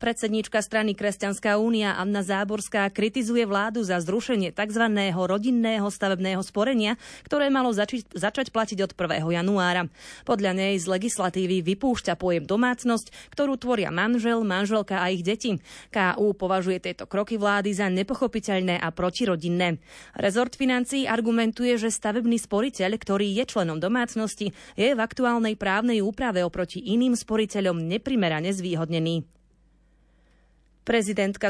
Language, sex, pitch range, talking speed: Slovak, female, 185-235 Hz, 125 wpm